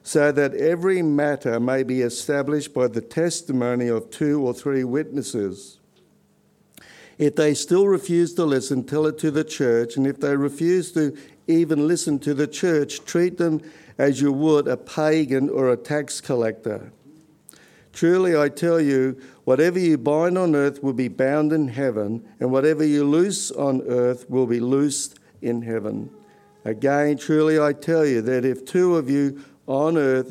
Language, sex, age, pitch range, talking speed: English, male, 60-79, 125-155 Hz, 165 wpm